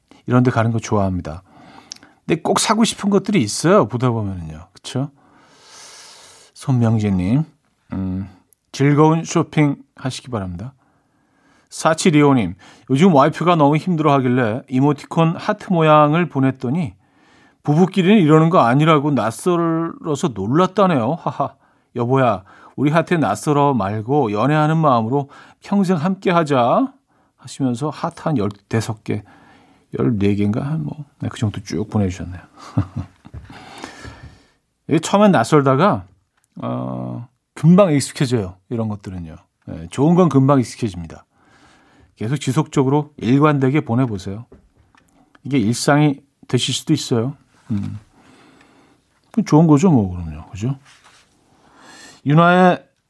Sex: male